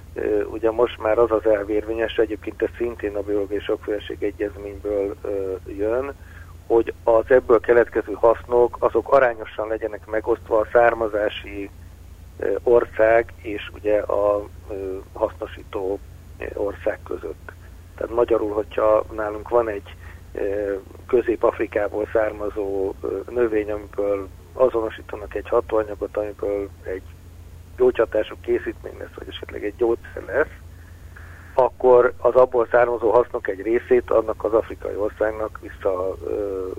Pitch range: 90-115 Hz